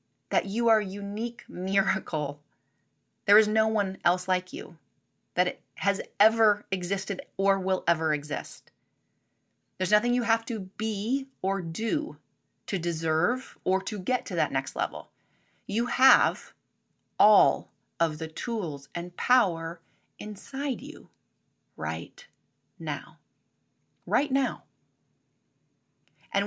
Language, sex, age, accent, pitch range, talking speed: English, female, 30-49, American, 160-235 Hz, 120 wpm